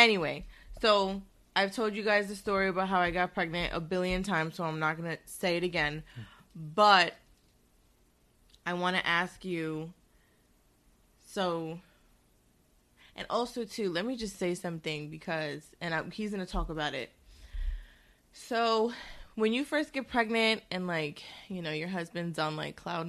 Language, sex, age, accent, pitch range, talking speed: English, female, 20-39, American, 160-200 Hz, 160 wpm